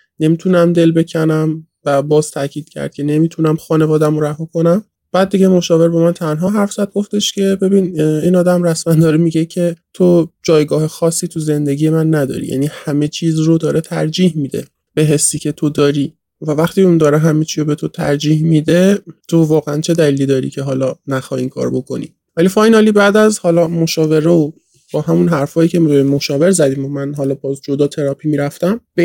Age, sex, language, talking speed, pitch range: 20-39, male, Persian, 185 wpm, 150-175 Hz